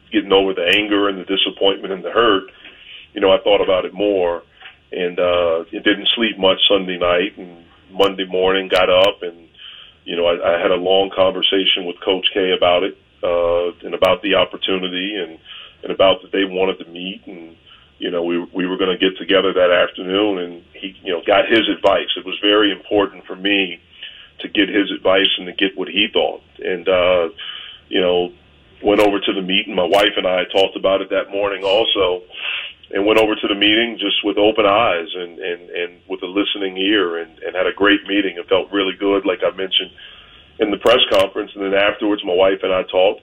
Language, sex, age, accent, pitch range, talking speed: English, male, 40-59, American, 90-100 Hz, 210 wpm